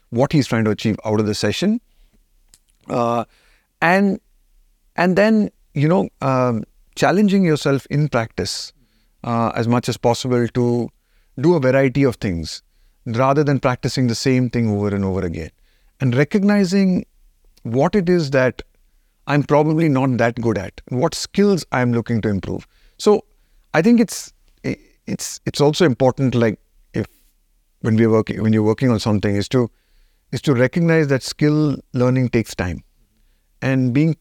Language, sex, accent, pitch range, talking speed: English, male, Indian, 115-150 Hz, 155 wpm